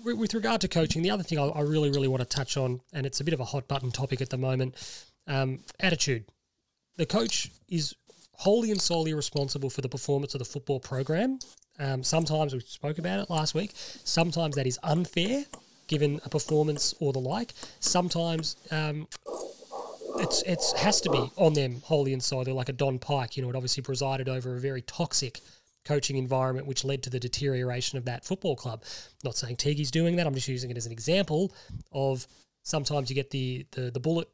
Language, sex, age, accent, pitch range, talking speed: English, male, 20-39, Australian, 130-165 Hz, 205 wpm